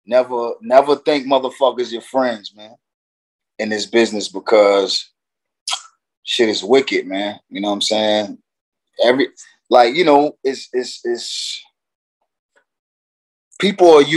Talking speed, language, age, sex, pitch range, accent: 125 wpm, English, 20-39, male, 105-160 Hz, American